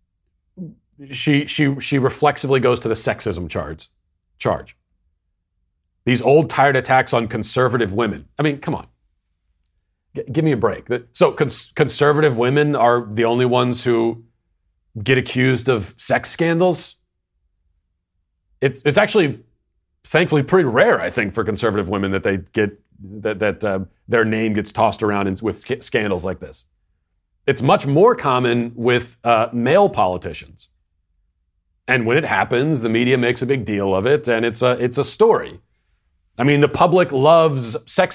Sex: male